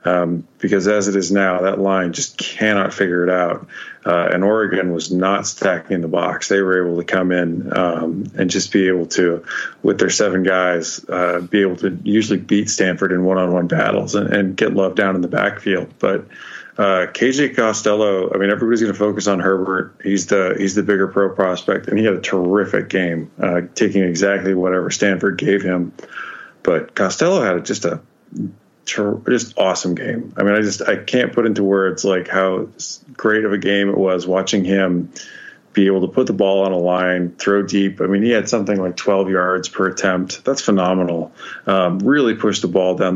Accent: American